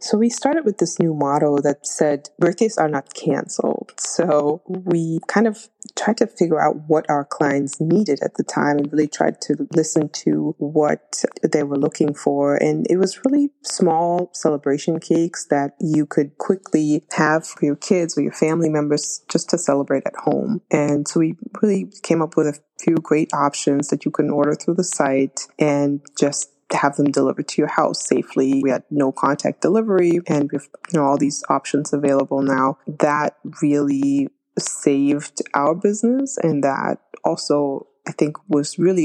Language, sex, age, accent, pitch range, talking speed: English, female, 20-39, American, 140-165 Hz, 180 wpm